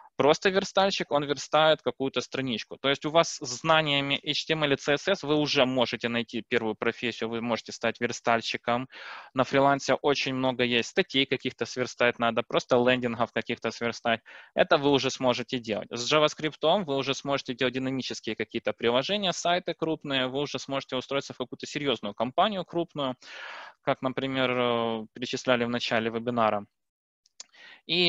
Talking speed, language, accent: 150 wpm, Ukrainian, native